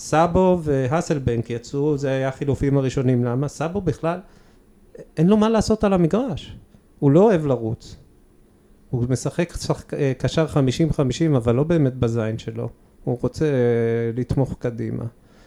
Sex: male